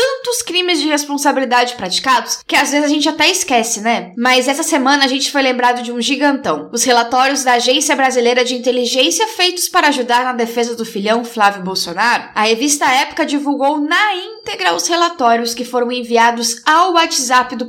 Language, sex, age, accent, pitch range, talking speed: Portuguese, female, 10-29, Brazilian, 245-325 Hz, 180 wpm